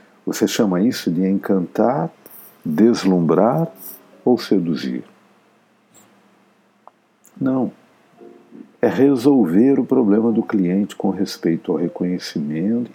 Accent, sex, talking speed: Brazilian, male, 90 wpm